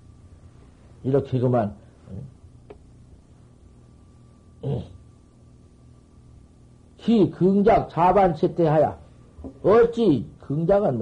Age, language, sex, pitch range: 50-69, Korean, male, 115-180 Hz